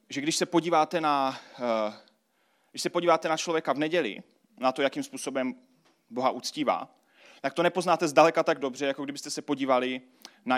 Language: Czech